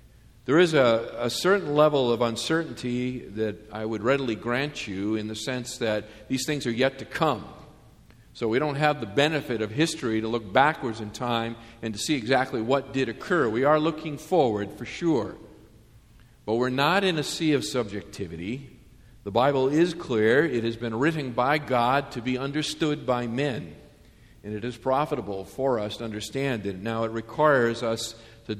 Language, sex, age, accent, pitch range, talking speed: English, male, 50-69, American, 110-135 Hz, 185 wpm